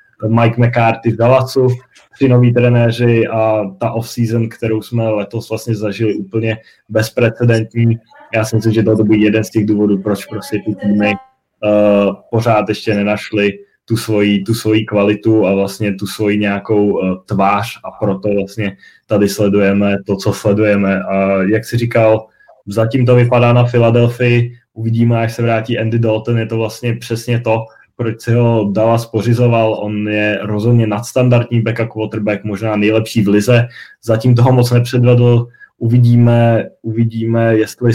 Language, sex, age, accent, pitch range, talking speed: Czech, male, 20-39, native, 110-120 Hz, 155 wpm